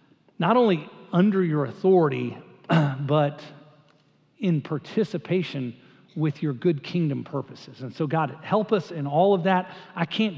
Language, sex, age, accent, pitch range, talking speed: English, male, 40-59, American, 150-190 Hz, 140 wpm